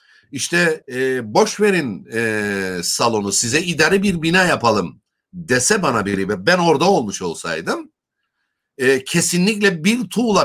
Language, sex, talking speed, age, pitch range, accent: Turkish, male, 120 wpm, 60-79, 130-195 Hz, native